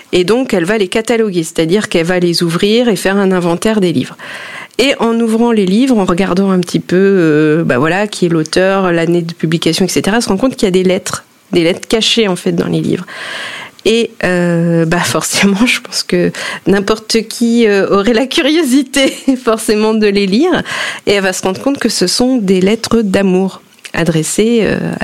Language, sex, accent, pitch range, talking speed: French, female, French, 175-225 Hz, 205 wpm